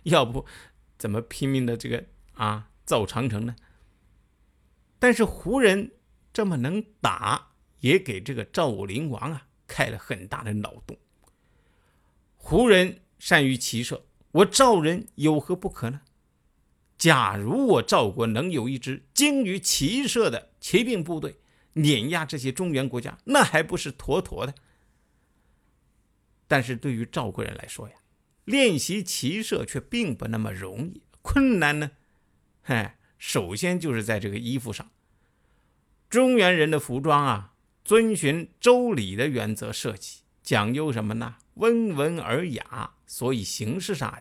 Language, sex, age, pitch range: Chinese, male, 50-69, 110-180 Hz